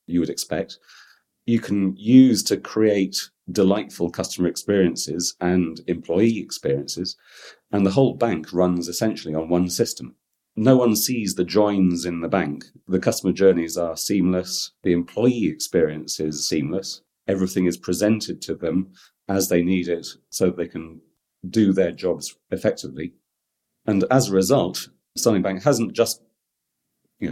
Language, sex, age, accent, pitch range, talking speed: English, male, 40-59, British, 85-100 Hz, 145 wpm